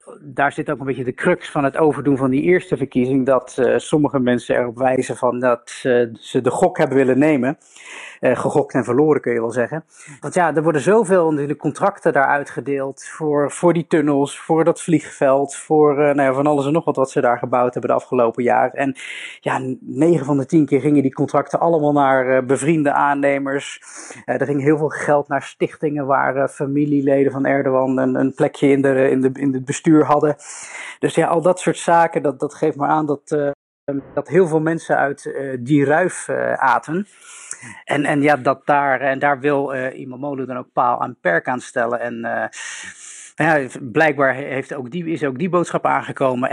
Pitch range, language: 130-150 Hz, Dutch